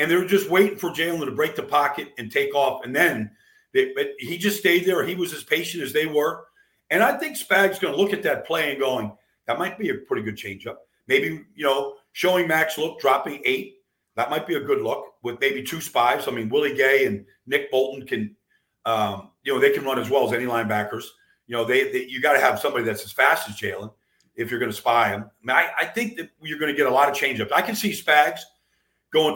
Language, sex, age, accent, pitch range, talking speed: English, male, 50-69, American, 140-215 Hz, 250 wpm